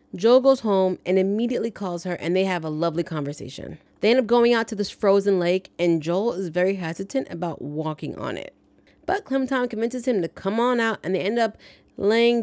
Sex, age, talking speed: female, 30-49, 210 wpm